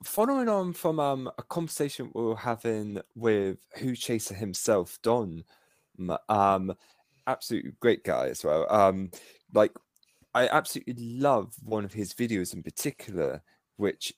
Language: English